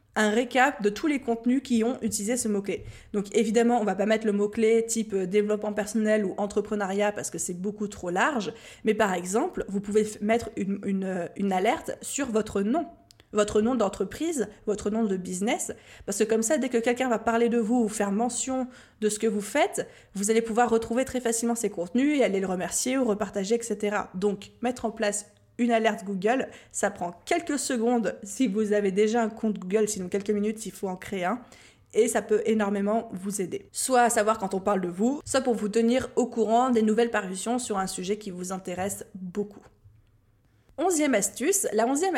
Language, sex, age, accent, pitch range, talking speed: French, female, 20-39, French, 205-245 Hz, 210 wpm